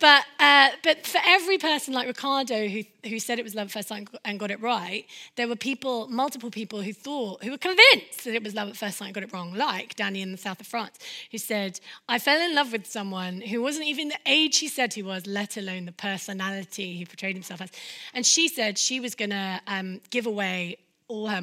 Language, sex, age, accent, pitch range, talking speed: English, female, 20-39, British, 195-270 Hz, 240 wpm